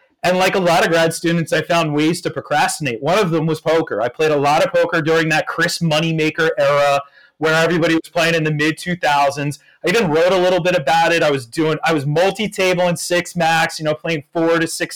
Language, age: English, 30-49